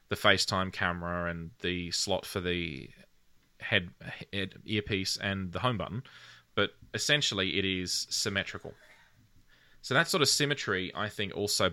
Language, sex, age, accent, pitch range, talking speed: English, male, 20-39, Australian, 90-110 Hz, 145 wpm